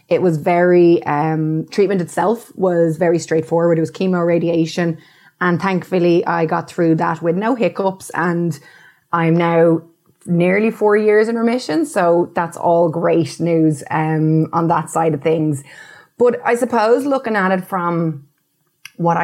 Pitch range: 160-185 Hz